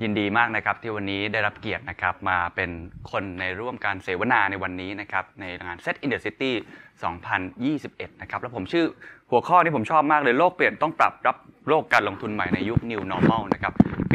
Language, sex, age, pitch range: Thai, male, 20-39, 100-130 Hz